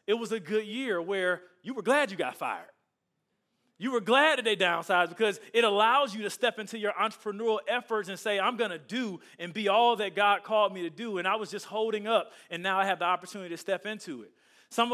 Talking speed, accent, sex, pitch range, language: 240 wpm, American, male, 180-230 Hz, English